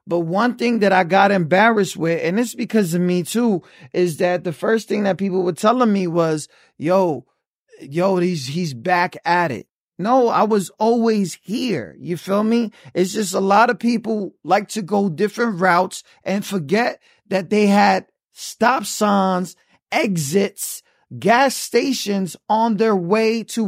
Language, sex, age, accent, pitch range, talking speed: English, male, 30-49, American, 185-230 Hz, 165 wpm